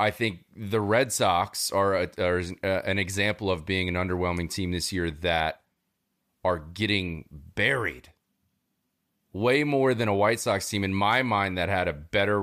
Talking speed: 170 wpm